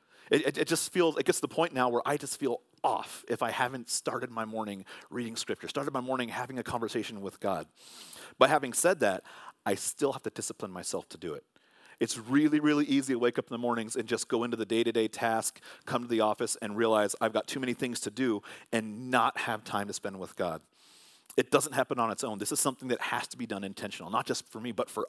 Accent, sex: American, male